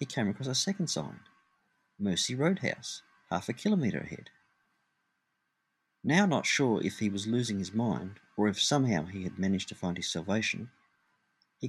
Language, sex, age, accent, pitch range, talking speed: English, male, 50-69, Australian, 100-170 Hz, 165 wpm